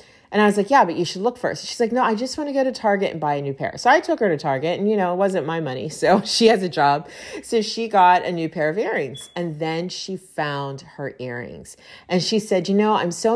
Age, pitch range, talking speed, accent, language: 40-59, 150-195 Hz, 290 wpm, American, English